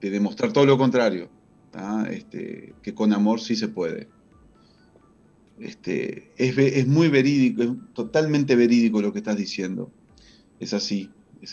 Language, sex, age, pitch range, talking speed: Spanish, male, 40-59, 105-155 Hz, 140 wpm